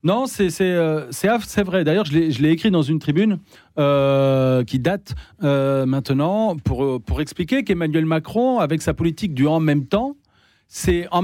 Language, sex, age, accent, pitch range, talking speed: French, male, 40-59, French, 140-205 Hz, 185 wpm